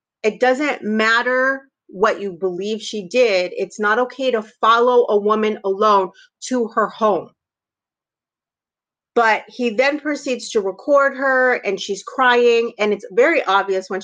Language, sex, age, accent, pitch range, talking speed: English, female, 30-49, American, 195-255 Hz, 145 wpm